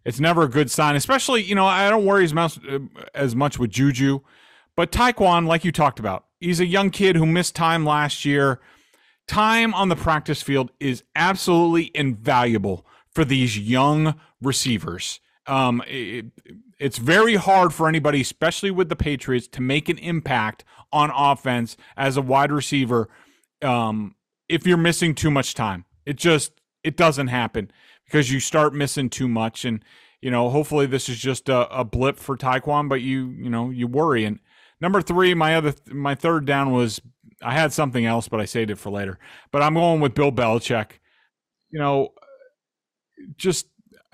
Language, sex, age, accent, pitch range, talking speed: English, male, 30-49, American, 125-165 Hz, 175 wpm